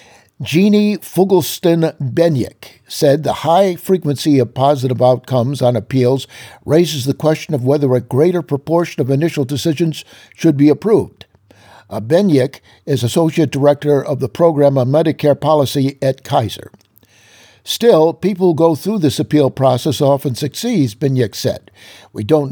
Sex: male